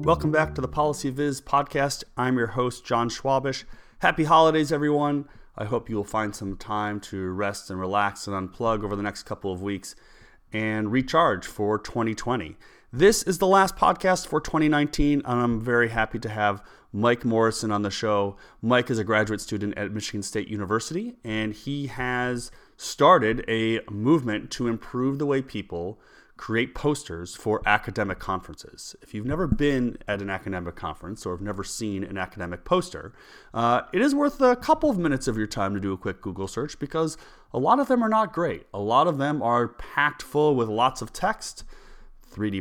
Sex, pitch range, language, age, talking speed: male, 105-145 Hz, English, 30-49, 185 wpm